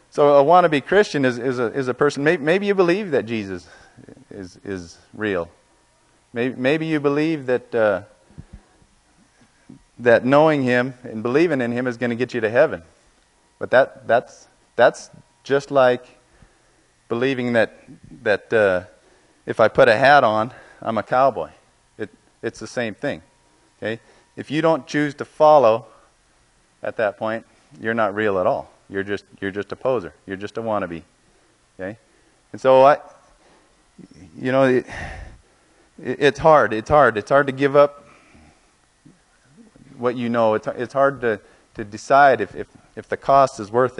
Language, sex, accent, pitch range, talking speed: English, male, American, 110-140 Hz, 160 wpm